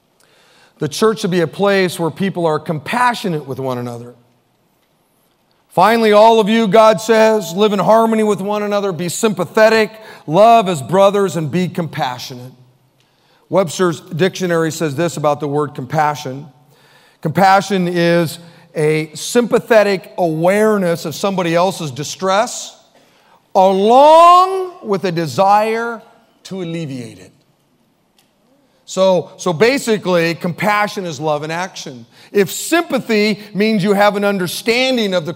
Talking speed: 125 wpm